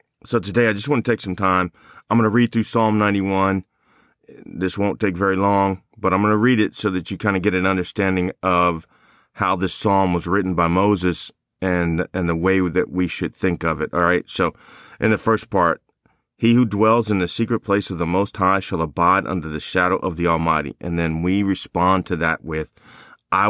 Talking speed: 220 wpm